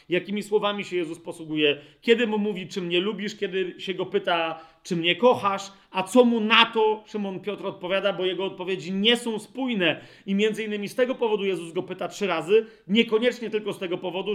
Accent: native